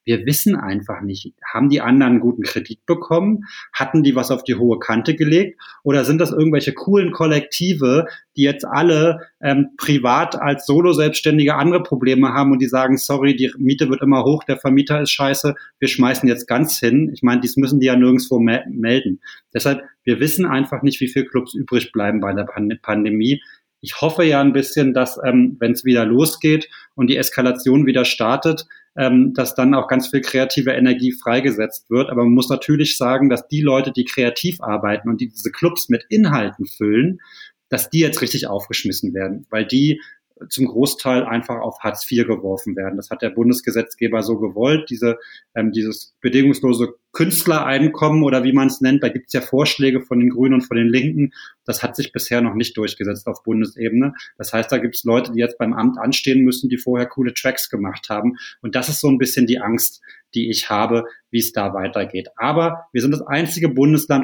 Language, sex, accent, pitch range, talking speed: German, male, German, 120-145 Hz, 195 wpm